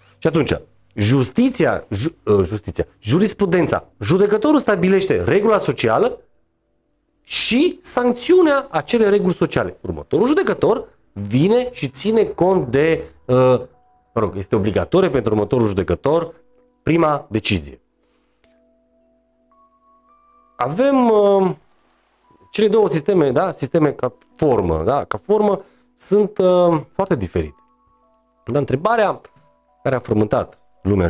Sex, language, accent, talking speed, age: male, Romanian, native, 105 wpm, 40-59